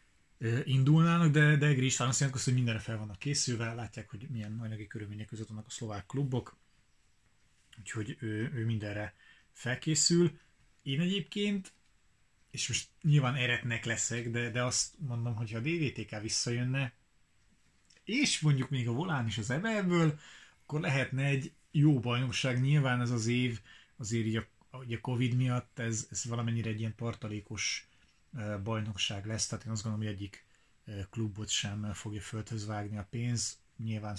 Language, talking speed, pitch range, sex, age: Hungarian, 150 wpm, 110-130 Hz, male, 30-49